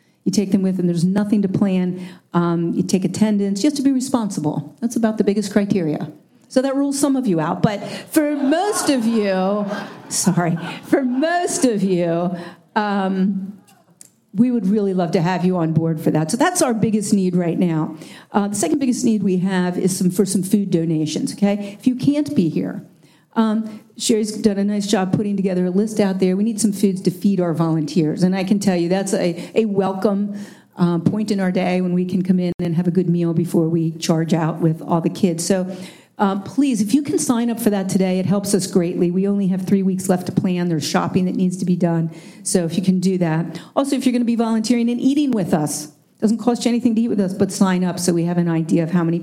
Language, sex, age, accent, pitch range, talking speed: English, female, 50-69, American, 175-220 Hz, 240 wpm